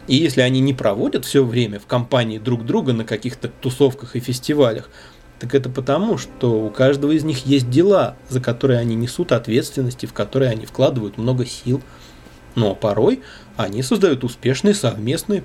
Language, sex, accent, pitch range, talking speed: Russian, male, native, 120-140 Hz, 180 wpm